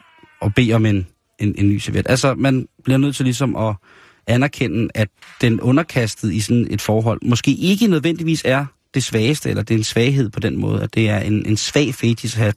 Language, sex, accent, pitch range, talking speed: Danish, male, native, 105-130 Hz, 210 wpm